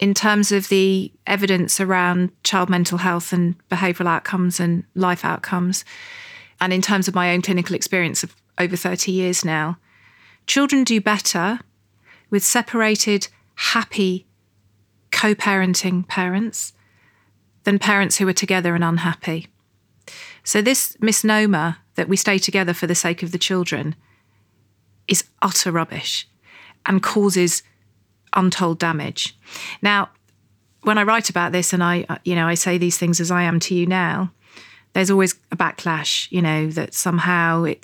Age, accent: 40-59, British